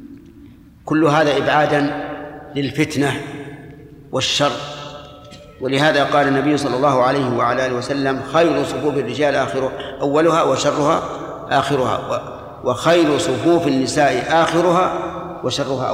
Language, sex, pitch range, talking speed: Arabic, male, 135-155 Hz, 100 wpm